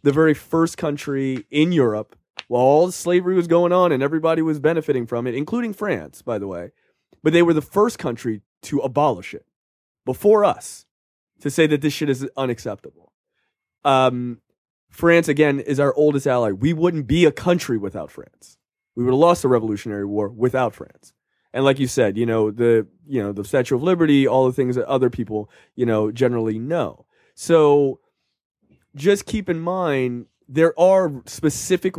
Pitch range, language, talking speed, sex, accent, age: 120-160 Hz, English, 180 wpm, male, American, 20-39